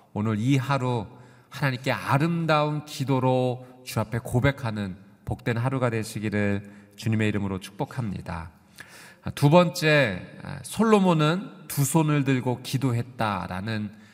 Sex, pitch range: male, 110-155 Hz